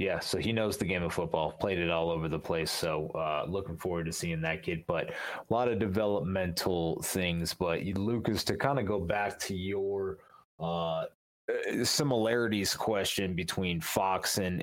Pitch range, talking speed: 90-105 Hz, 175 wpm